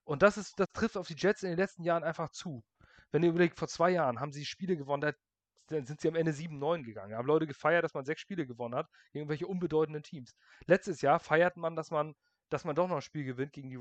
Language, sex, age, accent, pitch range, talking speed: German, male, 30-49, German, 145-180 Hz, 260 wpm